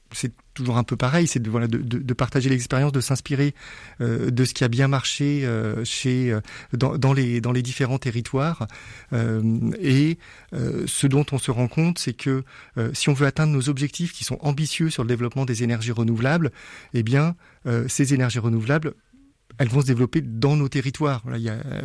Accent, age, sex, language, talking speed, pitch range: French, 40-59, male, French, 205 wpm, 120-145 Hz